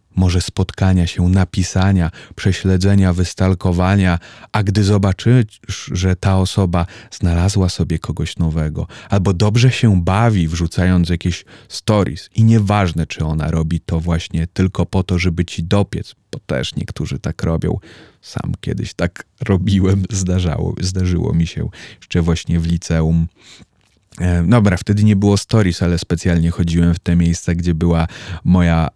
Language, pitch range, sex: Polish, 85-100 Hz, male